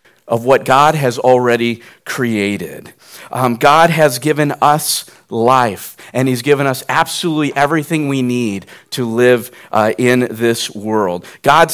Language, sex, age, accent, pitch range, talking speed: English, male, 50-69, American, 120-165 Hz, 140 wpm